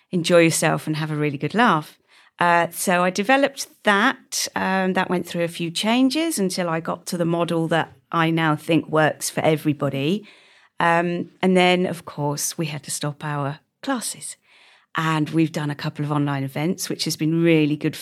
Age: 40-59